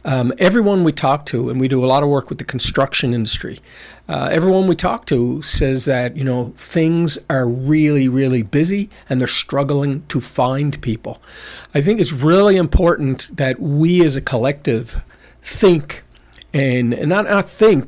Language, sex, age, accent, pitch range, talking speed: English, male, 50-69, American, 125-155 Hz, 175 wpm